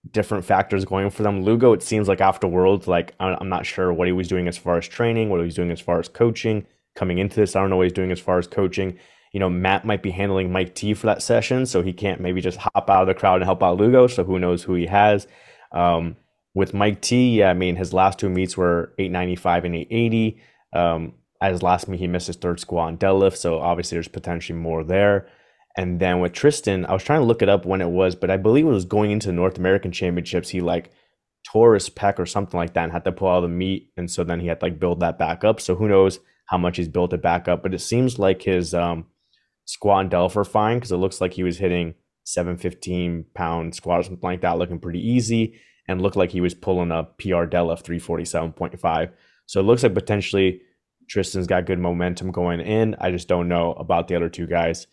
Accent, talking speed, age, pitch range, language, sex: American, 245 wpm, 20-39, 85-100 Hz, English, male